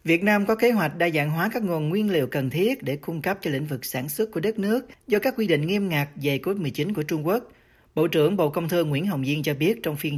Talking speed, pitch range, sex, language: 290 wpm, 130-185 Hz, male, Vietnamese